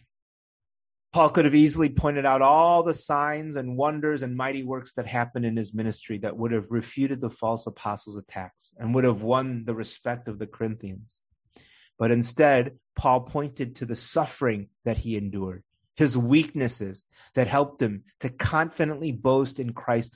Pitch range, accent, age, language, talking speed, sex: 110-140 Hz, American, 30-49, English, 165 wpm, male